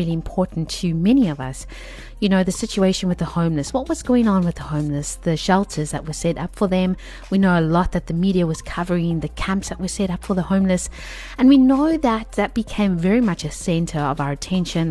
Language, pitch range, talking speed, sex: English, 160-205 Hz, 235 wpm, female